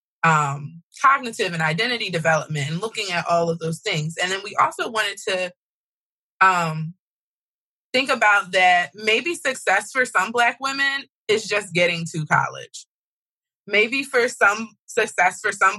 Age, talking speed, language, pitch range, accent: 20-39, 150 wpm, English, 150-200 Hz, American